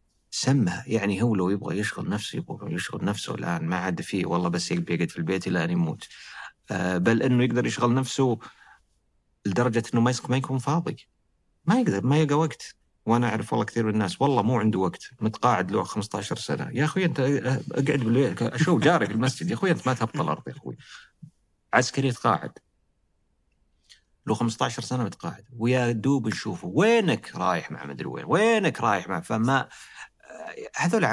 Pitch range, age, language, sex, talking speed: 100-135 Hz, 40-59, Arabic, male, 165 wpm